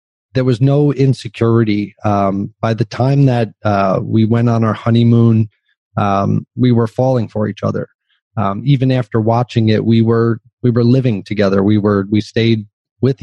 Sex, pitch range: male, 105-120 Hz